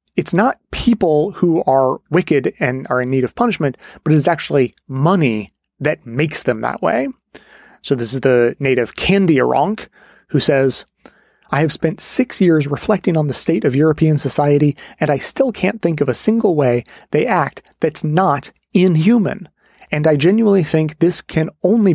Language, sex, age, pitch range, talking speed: English, male, 30-49, 145-190 Hz, 170 wpm